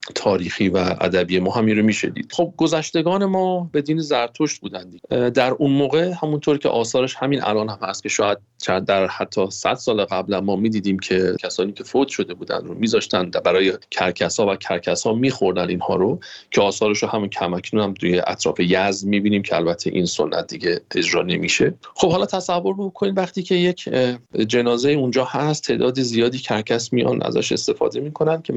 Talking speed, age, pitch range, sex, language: 185 wpm, 40-59, 100-150 Hz, male, Persian